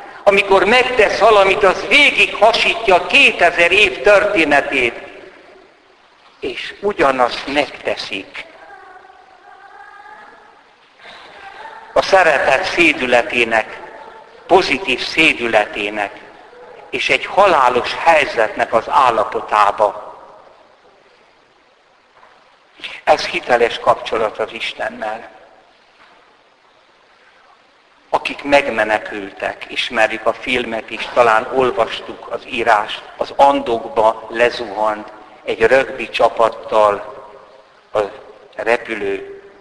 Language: Hungarian